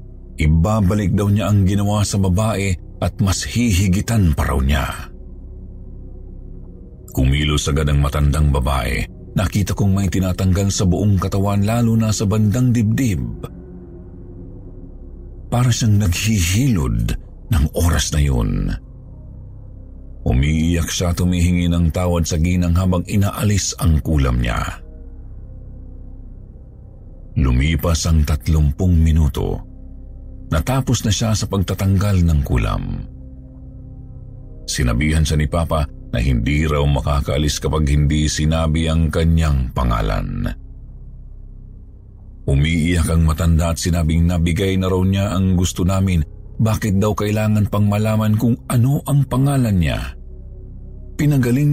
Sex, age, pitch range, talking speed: male, 50-69, 75-100 Hz, 115 wpm